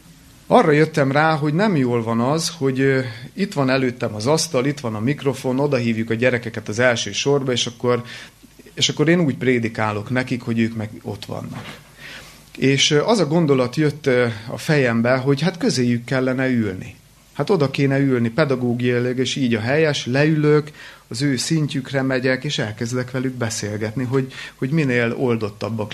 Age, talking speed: 30-49, 165 wpm